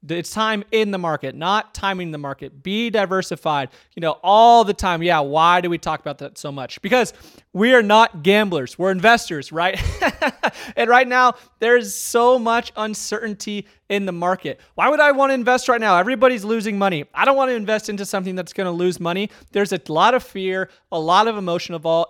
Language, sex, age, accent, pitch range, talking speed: English, male, 30-49, American, 150-200 Hz, 205 wpm